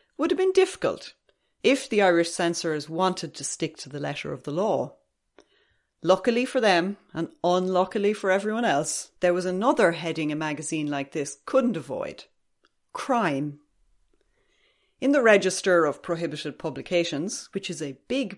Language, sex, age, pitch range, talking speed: English, female, 30-49, 165-235 Hz, 150 wpm